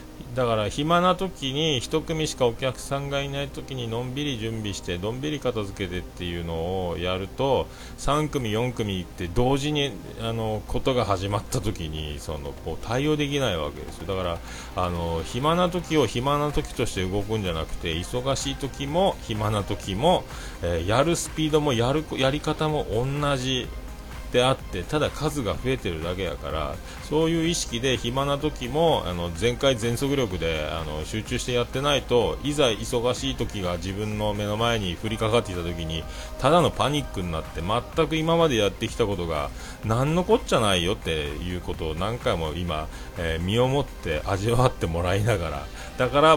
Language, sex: Japanese, male